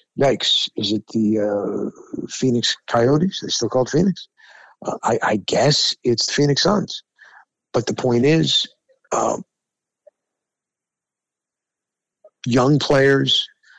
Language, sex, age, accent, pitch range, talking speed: English, male, 50-69, American, 120-145 Hz, 115 wpm